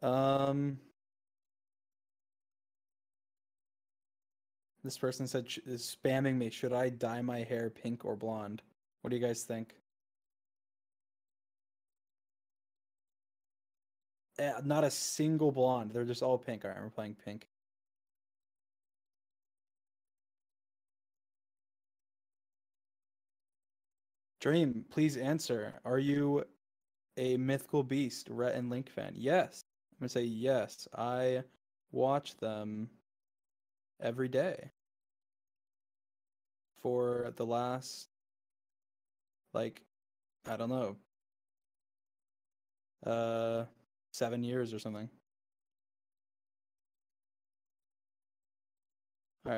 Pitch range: 115-130 Hz